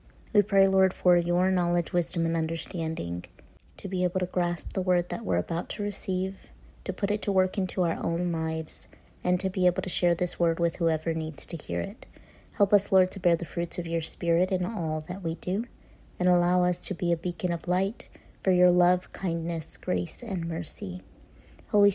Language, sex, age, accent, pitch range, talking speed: English, female, 30-49, American, 170-190 Hz, 210 wpm